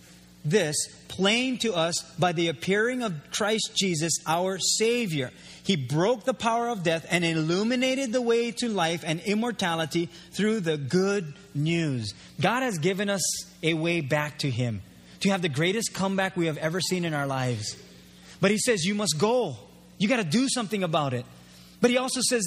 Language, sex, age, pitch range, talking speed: English, male, 30-49, 165-235 Hz, 180 wpm